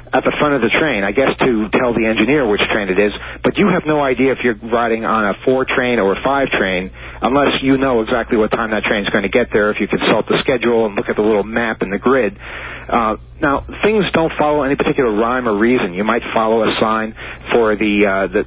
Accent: American